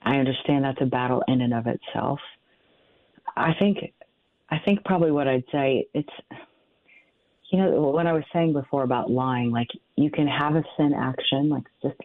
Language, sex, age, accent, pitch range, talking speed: English, female, 40-59, American, 130-160 Hz, 180 wpm